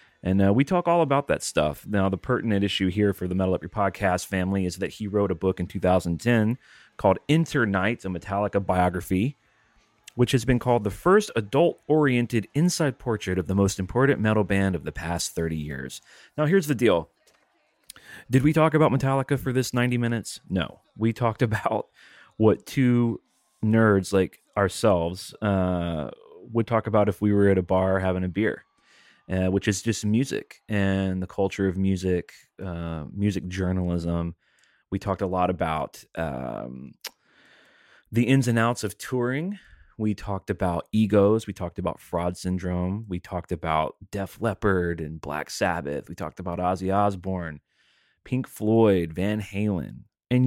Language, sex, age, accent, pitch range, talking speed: English, male, 30-49, American, 90-115 Hz, 165 wpm